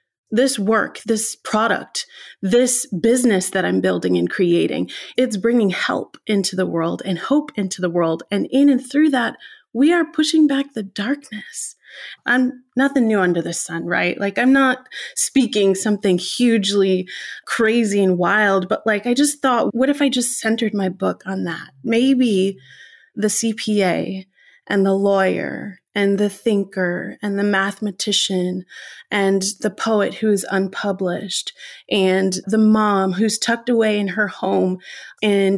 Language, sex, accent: English, female, American